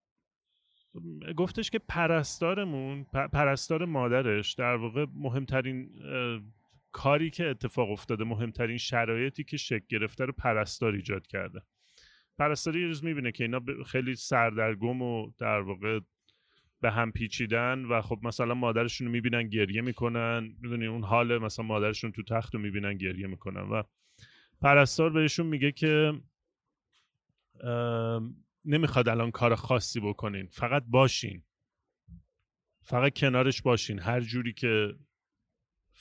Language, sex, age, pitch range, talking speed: Persian, male, 30-49, 115-145 Hz, 120 wpm